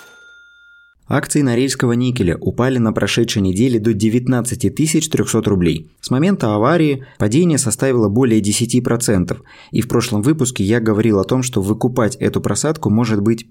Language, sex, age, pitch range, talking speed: Russian, male, 20-39, 105-130 Hz, 140 wpm